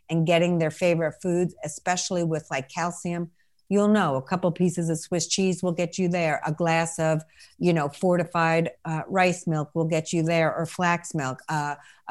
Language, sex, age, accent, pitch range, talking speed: English, female, 50-69, American, 155-210 Hz, 190 wpm